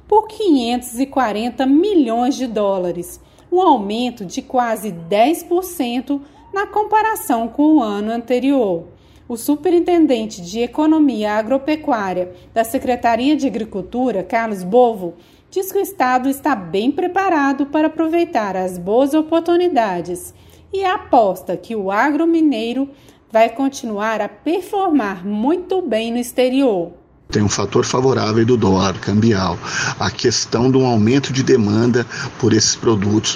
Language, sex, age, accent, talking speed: Portuguese, female, 40-59, Brazilian, 125 wpm